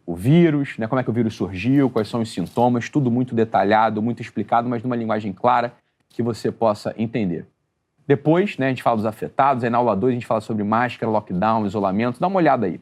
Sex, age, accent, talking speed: male, 30-49, Brazilian, 225 wpm